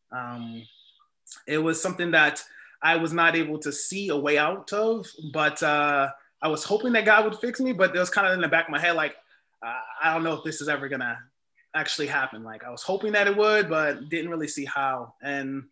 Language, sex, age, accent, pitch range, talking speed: English, male, 20-39, American, 140-170 Hz, 235 wpm